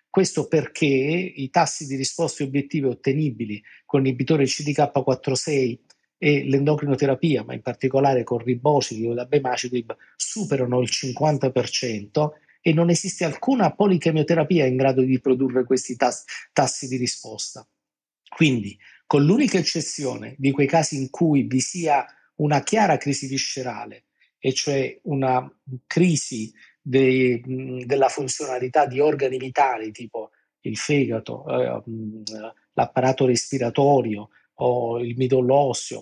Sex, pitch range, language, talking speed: male, 125-150 Hz, Italian, 120 wpm